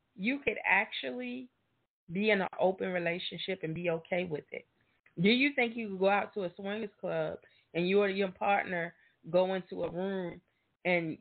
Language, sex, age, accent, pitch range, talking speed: English, female, 20-39, American, 175-220 Hz, 180 wpm